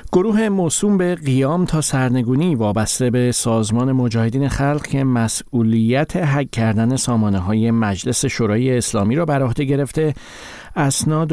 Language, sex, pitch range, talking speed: Persian, male, 110-140 Hz, 135 wpm